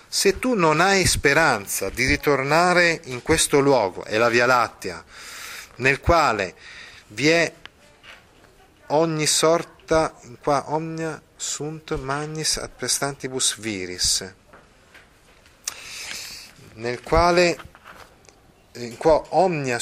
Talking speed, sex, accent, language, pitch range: 60 wpm, male, native, Italian, 120-160 Hz